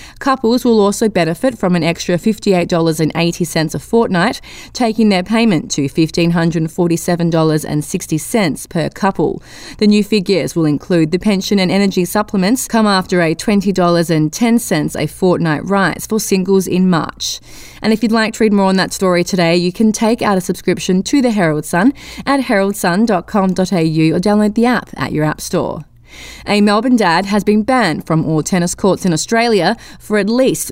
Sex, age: female, 20-39